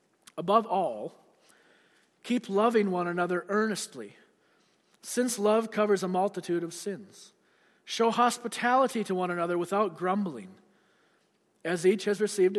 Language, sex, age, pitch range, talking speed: English, male, 40-59, 175-215 Hz, 120 wpm